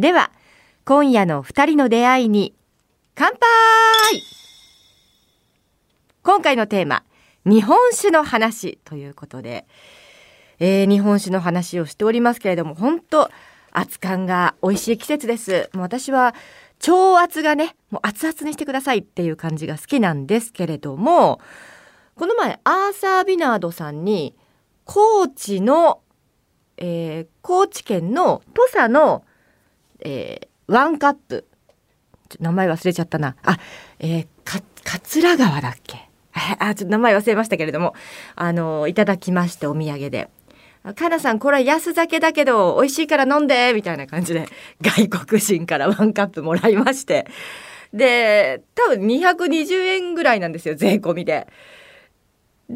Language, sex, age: Japanese, female, 40-59